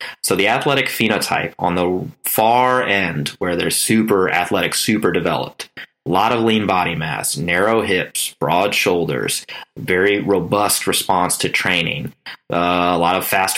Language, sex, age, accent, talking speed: English, male, 30-49, American, 150 wpm